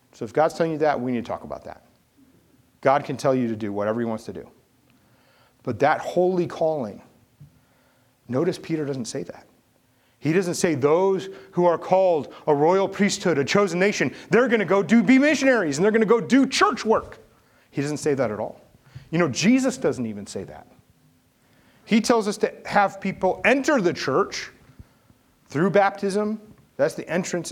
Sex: male